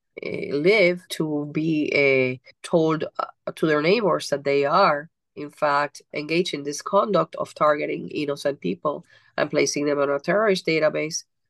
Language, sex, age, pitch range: English, female, 40-59, 140-165 Hz